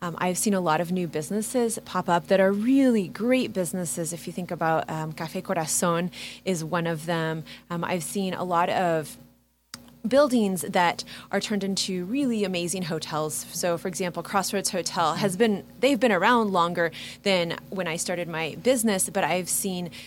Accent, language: American, English